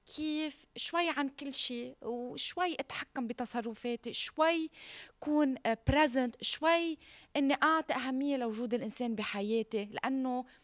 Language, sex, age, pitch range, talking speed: Arabic, female, 20-39, 200-275 Hz, 105 wpm